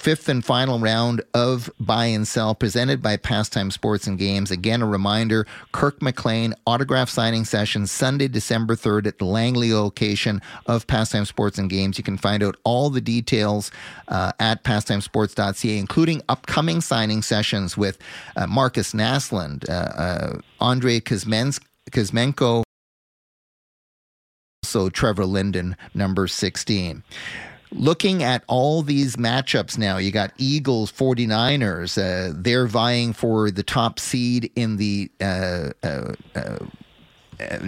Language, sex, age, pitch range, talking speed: English, male, 30-49, 105-130 Hz, 130 wpm